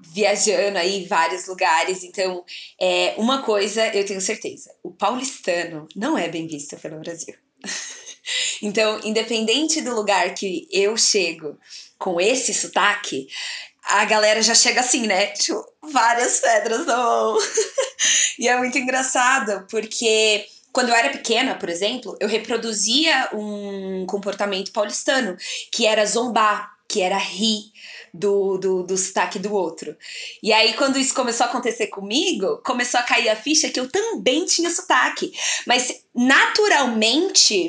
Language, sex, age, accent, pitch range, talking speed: Portuguese, female, 20-39, Brazilian, 200-275 Hz, 140 wpm